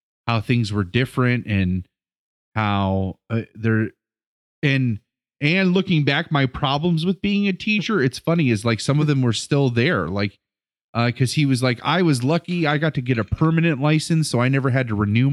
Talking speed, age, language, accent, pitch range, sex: 195 wpm, 30-49, English, American, 105-135 Hz, male